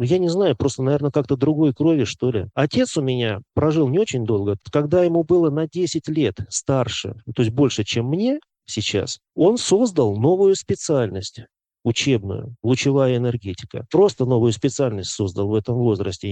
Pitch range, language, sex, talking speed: 115-160 Hz, Russian, male, 160 wpm